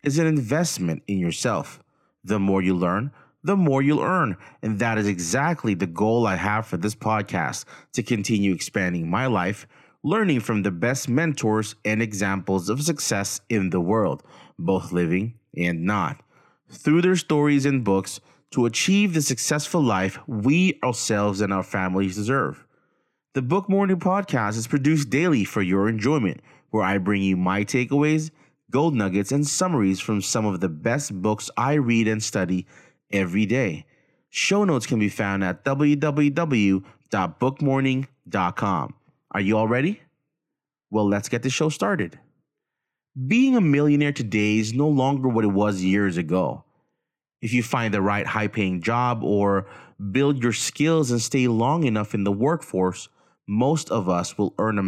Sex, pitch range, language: male, 100-145 Hz, English